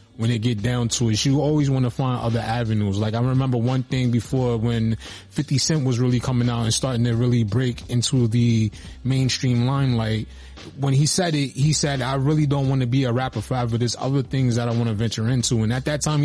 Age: 20-39